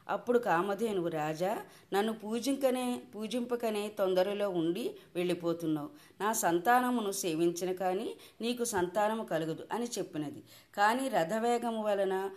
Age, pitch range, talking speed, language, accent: 20-39, 175-220 Hz, 100 wpm, Telugu, native